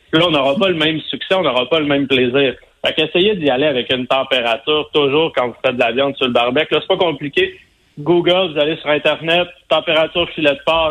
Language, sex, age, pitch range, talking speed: French, male, 30-49, 135-160 Hz, 235 wpm